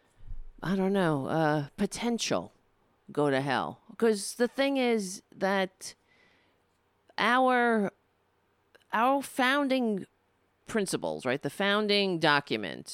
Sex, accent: female, American